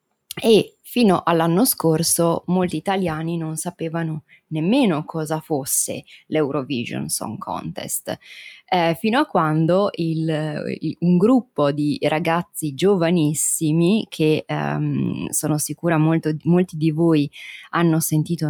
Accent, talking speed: native, 105 wpm